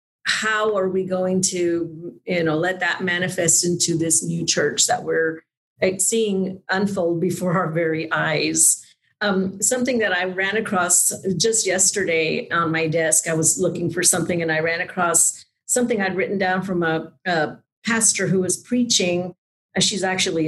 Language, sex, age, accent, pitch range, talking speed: English, female, 50-69, American, 165-200 Hz, 160 wpm